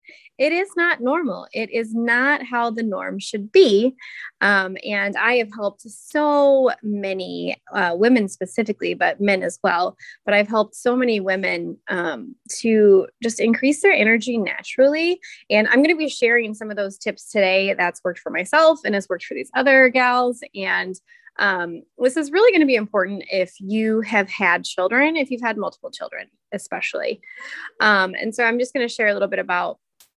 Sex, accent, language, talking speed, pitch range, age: female, American, English, 185 wpm, 195-260 Hz, 20-39